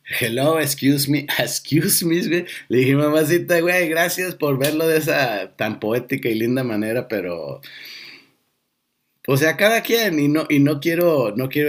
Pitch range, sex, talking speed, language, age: 130-175 Hz, male, 160 wpm, Spanish, 50-69